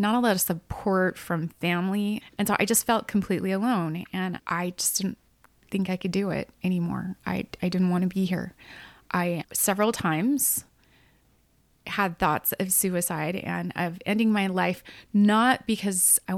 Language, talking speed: English, 170 wpm